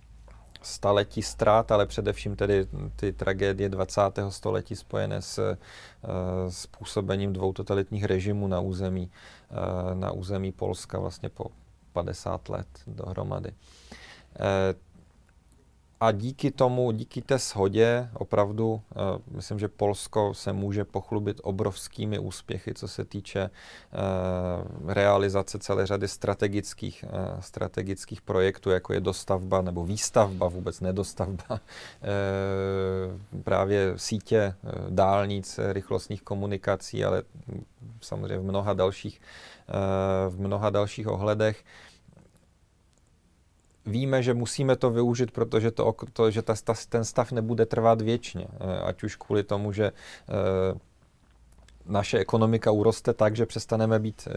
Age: 30-49